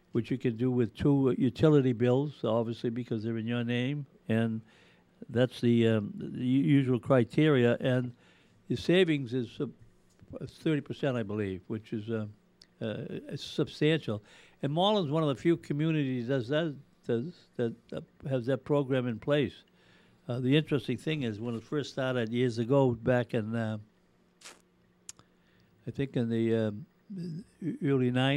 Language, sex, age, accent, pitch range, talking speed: English, male, 60-79, American, 120-140 Hz, 145 wpm